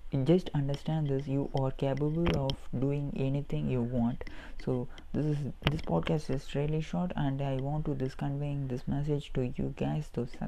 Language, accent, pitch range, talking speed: English, Indian, 130-155 Hz, 180 wpm